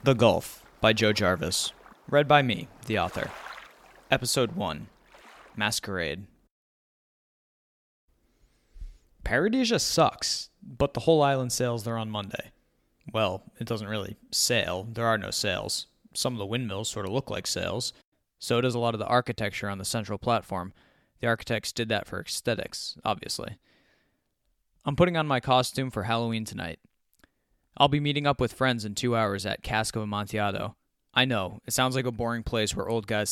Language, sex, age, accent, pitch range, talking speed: English, male, 20-39, American, 105-130 Hz, 160 wpm